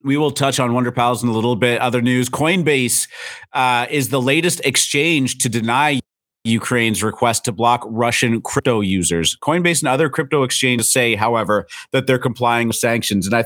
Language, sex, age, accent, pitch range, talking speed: English, male, 30-49, American, 100-125 Hz, 185 wpm